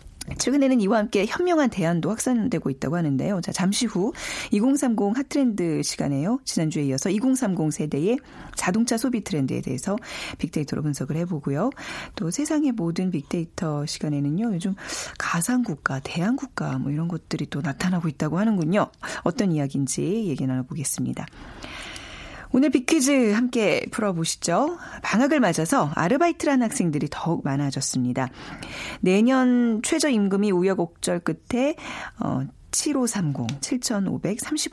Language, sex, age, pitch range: Korean, female, 40-59, 155-245 Hz